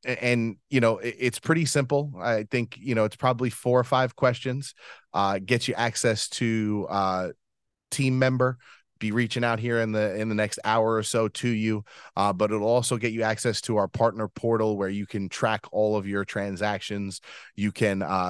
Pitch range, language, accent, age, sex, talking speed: 100-120 Hz, English, American, 30-49, male, 200 wpm